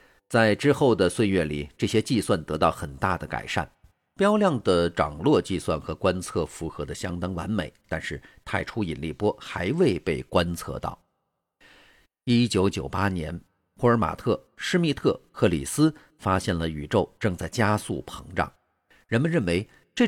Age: 50-69